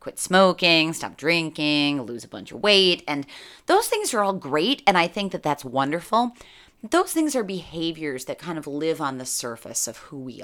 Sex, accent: female, American